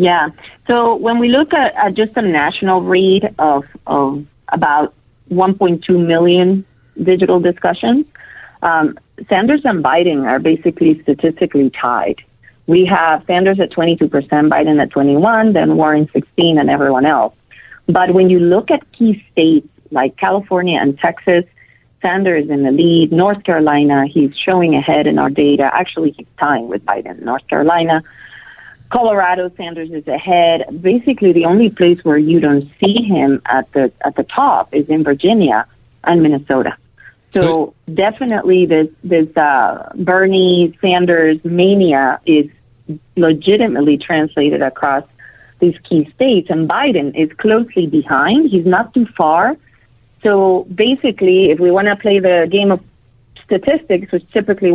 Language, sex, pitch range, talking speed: English, female, 155-190 Hz, 145 wpm